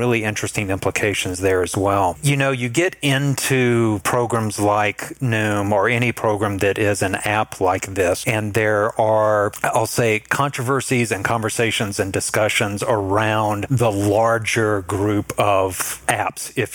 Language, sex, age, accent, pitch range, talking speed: English, male, 40-59, American, 100-120 Hz, 145 wpm